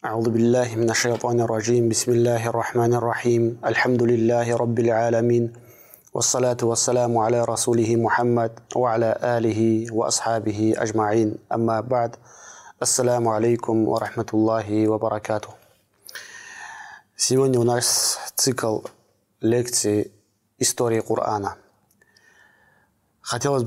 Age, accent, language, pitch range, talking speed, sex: 20-39, Lebanese, Russian, 105-120 Hz, 95 wpm, male